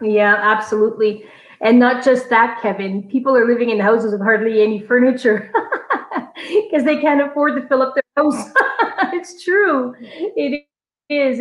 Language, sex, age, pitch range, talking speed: English, female, 30-49, 210-260 Hz, 155 wpm